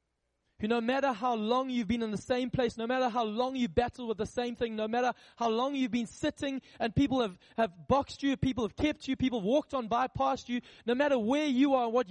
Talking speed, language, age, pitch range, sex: 245 wpm, English, 20-39, 225-275 Hz, male